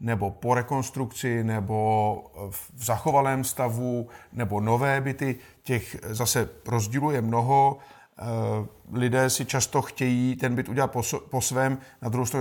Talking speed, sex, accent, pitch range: 125 wpm, male, native, 115-130 Hz